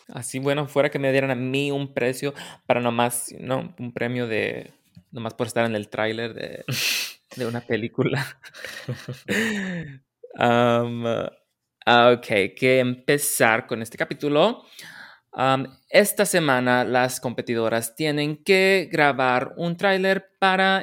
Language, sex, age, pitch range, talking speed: English, male, 20-39, 120-170 Hz, 120 wpm